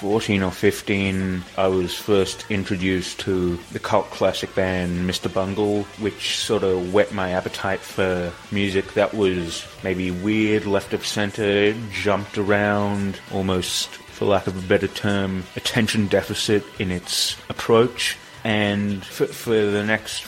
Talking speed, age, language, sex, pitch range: 140 wpm, 30-49, English, male, 95-110 Hz